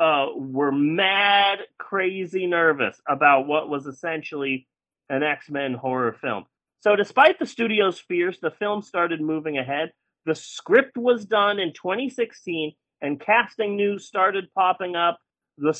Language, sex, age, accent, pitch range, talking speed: English, male, 30-49, American, 145-205 Hz, 135 wpm